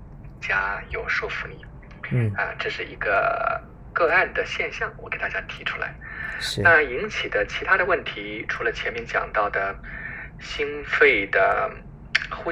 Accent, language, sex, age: native, Chinese, male, 20-39